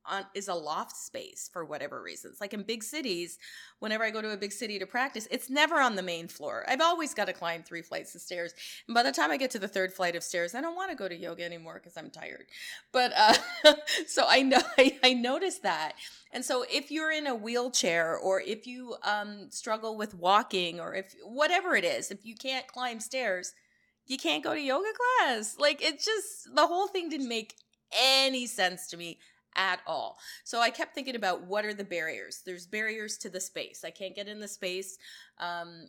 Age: 30-49